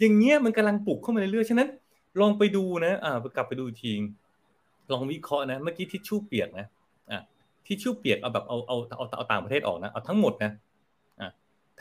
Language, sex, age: Thai, male, 30-49